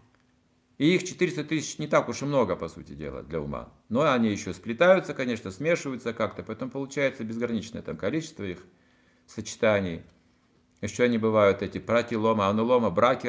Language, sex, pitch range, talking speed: Russian, male, 110-135 Hz, 155 wpm